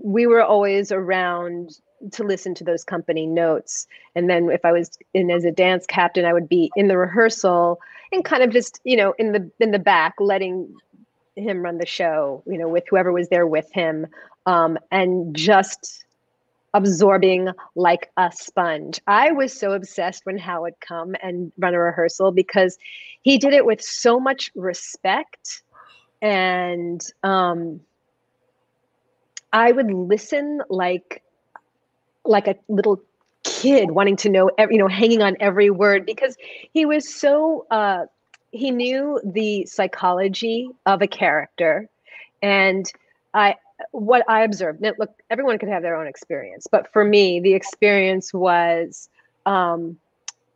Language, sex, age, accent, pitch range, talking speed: English, female, 30-49, American, 175-220 Hz, 150 wpm